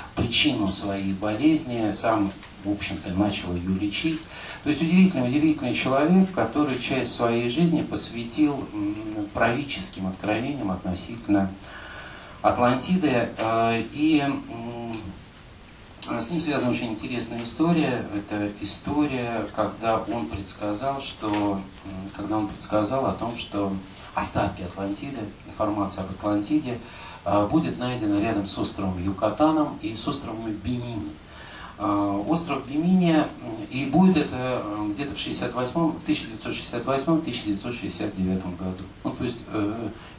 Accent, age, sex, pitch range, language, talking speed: native, 40-59, male, 100-135 Hz, Russian, 100 wpm